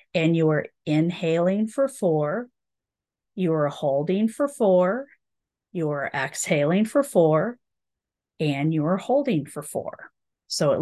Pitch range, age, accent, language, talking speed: 155-195 Hz, 40-59, American, English, 135 wpm